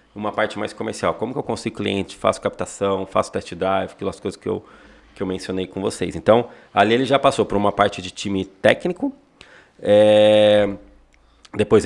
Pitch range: 95-110 Hz